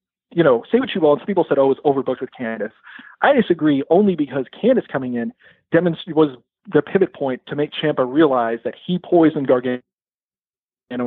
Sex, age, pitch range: male, 40-59, 125-155 Hz